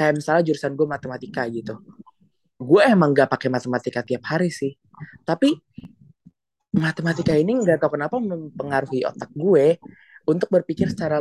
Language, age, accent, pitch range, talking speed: Indonesian, 20-39, native, 130-165 Hz, 140 wpm